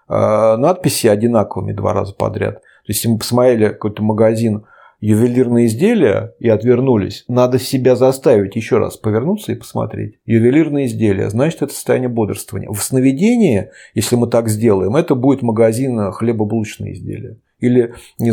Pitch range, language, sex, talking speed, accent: 105-140 Hz, Russian, male, 140 wpm, native